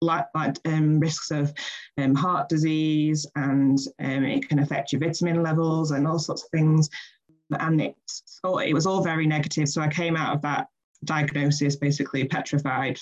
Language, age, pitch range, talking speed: English, 20-39, 145-155 Hz, 170 wpm